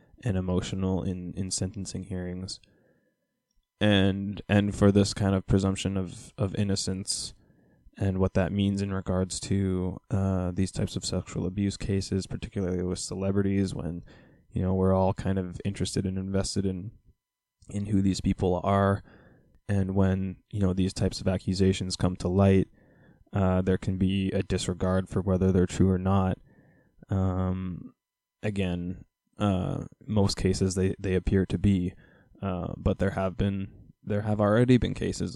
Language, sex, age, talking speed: English, male, 10-29, 155 wpm